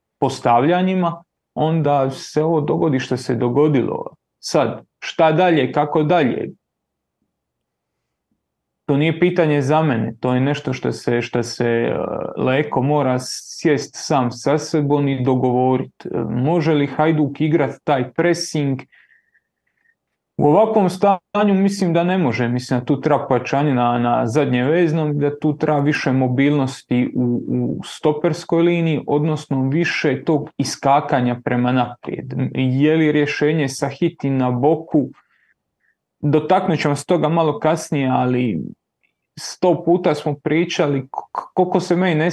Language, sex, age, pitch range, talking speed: Croatian, male, 30-49, 130-165 Hz, 130 wpm